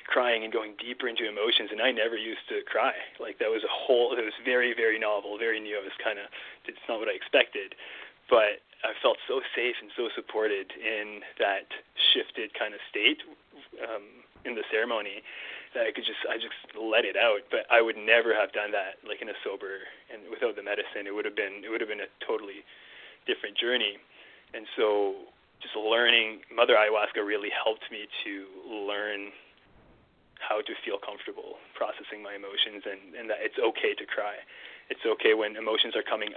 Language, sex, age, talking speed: English, male, 20-39, 195 wpm